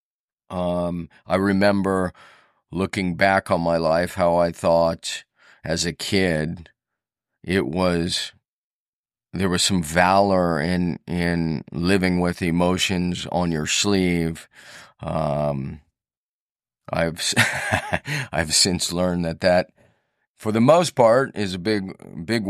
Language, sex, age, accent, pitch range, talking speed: English, male, 40-59, American, 85-100 Hz, 115 wpm